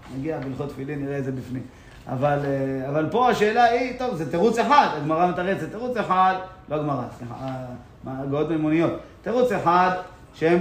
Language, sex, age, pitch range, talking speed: Hebrew, male, 30-49, 145-205 Hz, 165 wpm